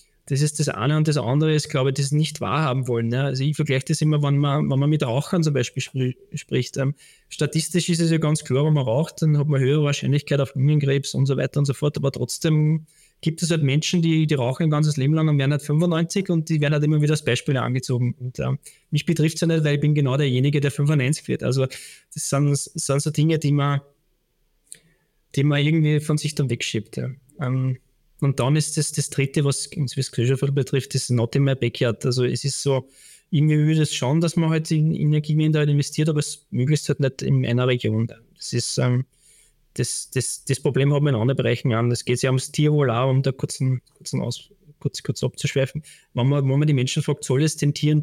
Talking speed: 235 wpm